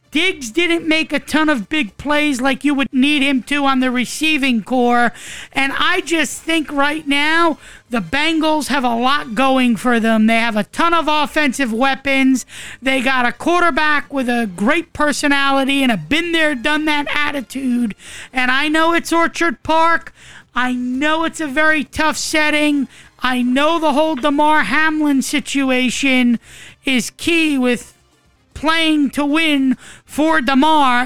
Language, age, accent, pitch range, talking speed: English, 40-59, American, 260-315 Hz, 155 wpm